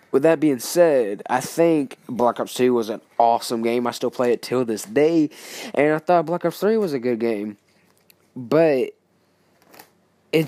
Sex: male